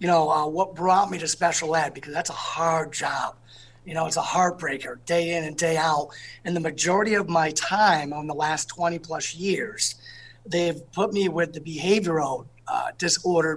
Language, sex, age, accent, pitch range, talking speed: English, male, 30-49, American, 160-200 Hz, 195 wpm